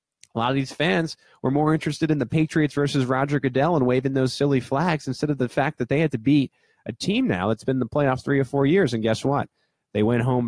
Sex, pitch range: male, 105-130 Hz